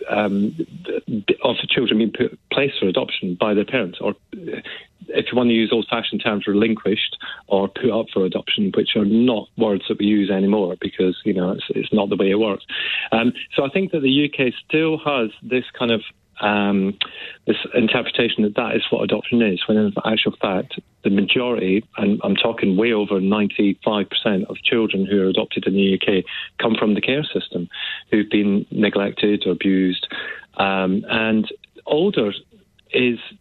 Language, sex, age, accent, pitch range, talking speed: English, male, 40-59, British, 100-120 Hz, 175 wpm